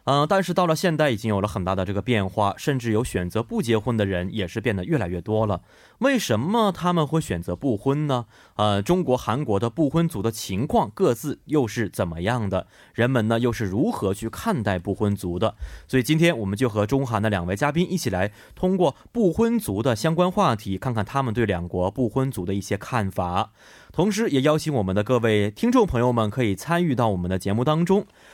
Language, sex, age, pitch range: Korean, male, 20-39, 105-150 Hz